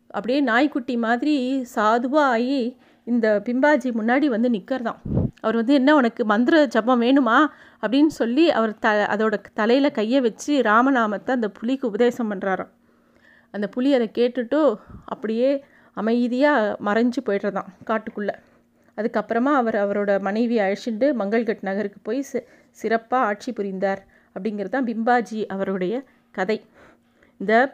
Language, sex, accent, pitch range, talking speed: Tamil, female, native, 215-255 Hz, 125 wpm